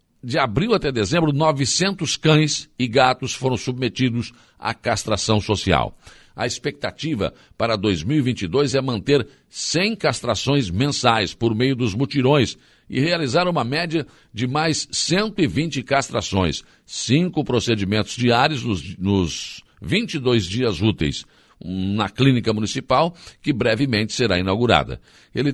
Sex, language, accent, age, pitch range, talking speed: male, Portuguese, Brazilian, 60-79, 105-145 Hz, 115 wpm